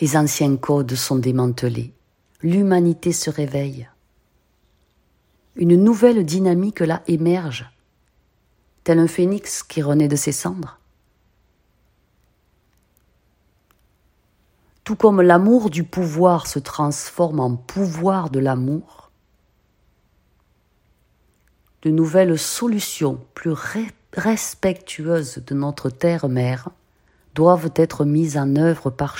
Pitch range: 135-180 Hz